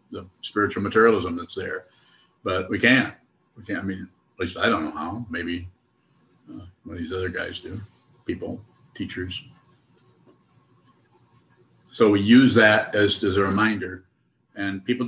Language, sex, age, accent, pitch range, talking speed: English, male, 50-69, American, 90-105 Hz, 150 wpm